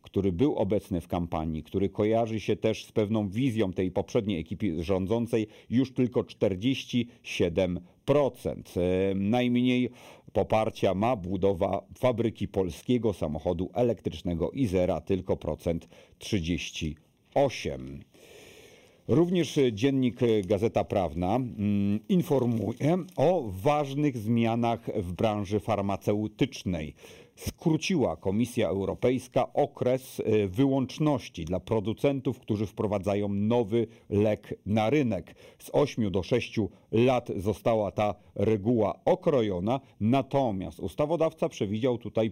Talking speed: 95 wpm